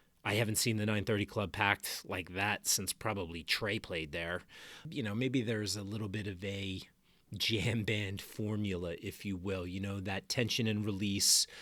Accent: American